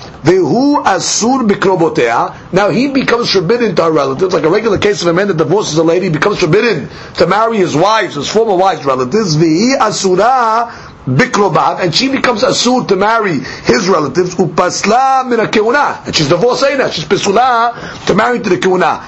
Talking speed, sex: 155 wpm, male